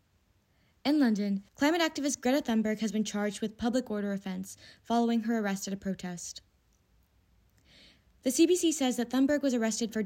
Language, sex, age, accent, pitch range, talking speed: English, female, 20-39, American, 175-245 Hz, 160 wpm